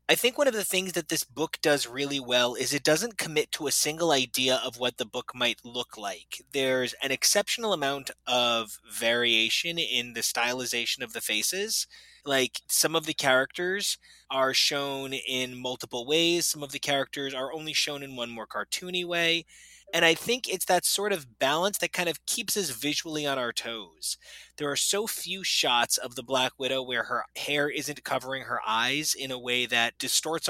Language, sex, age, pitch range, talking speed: English, male, 20-39, 130-180 Hz, 195 wpm